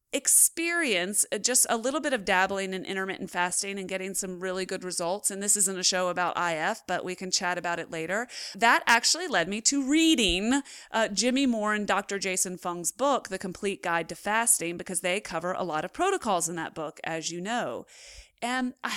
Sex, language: female, English